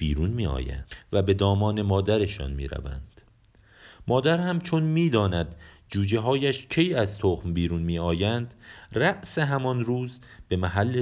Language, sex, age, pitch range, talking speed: Persian, male, 40-59, 90-120 Hz, 130 wpm